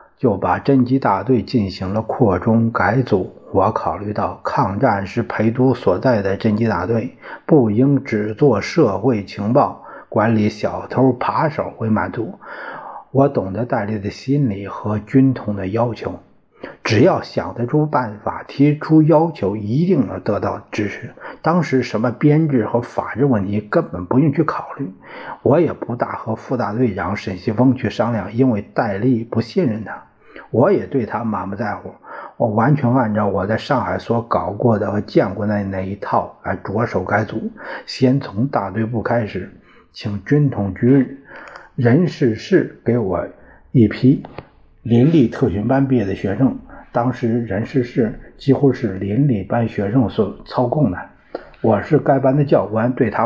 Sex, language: male, Chinese